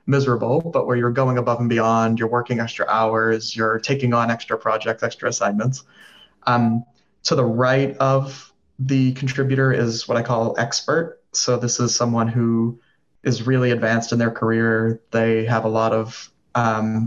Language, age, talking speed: English, 20-39, 170 wpm